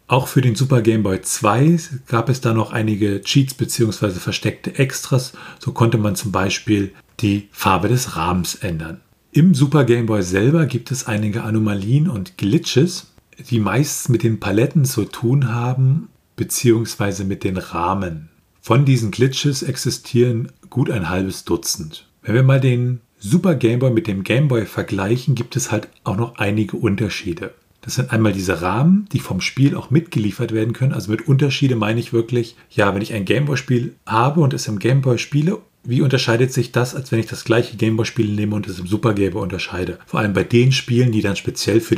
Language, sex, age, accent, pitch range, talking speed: German, male, 40-59, German, 105-130 Hz, 185 wpm